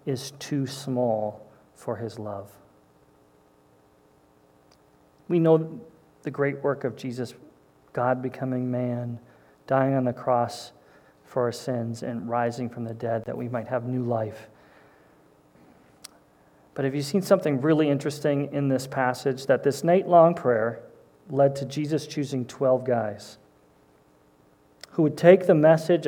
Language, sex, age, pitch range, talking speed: English, male, 40-59, 115-150 Hz, 140 wpm